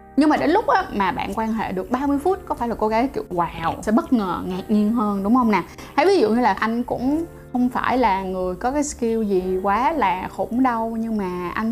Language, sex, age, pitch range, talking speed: Vietnamese, female, 10-29, 215-280 Hz, 250 wpm